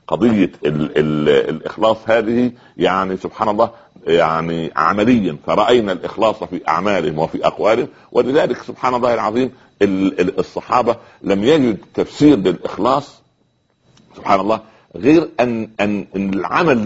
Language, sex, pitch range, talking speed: Arabic, male, 90-115 Hz, 110 wpm